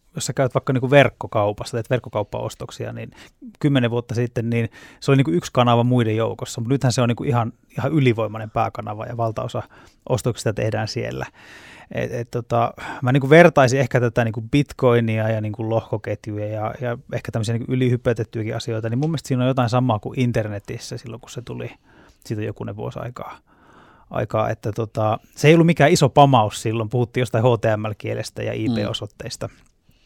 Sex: male